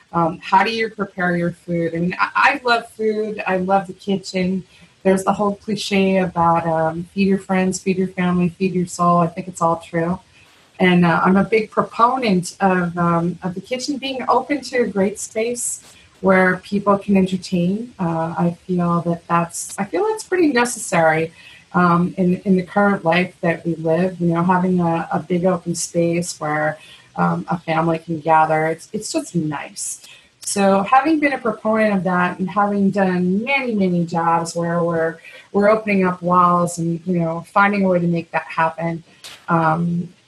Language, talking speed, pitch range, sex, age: English, 190 wpm, 170-200 Hz, female, 30-49